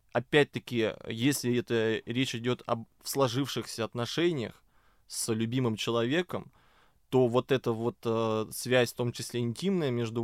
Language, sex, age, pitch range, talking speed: Russian, male, 20-39, 110-130 Hz, 130 wpm